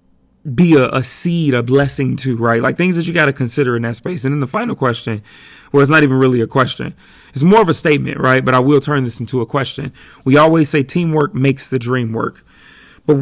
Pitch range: 120-145 Hz